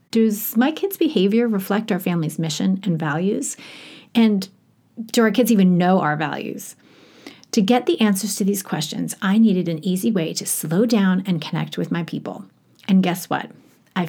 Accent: American